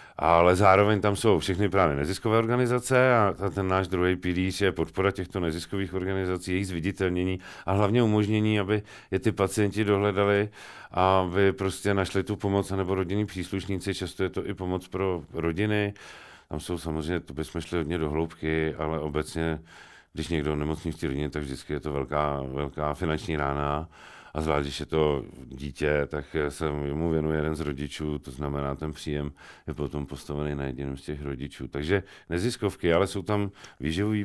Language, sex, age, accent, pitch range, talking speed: Czech, male, 40-59, native, 80-95 Hz, 175 wpm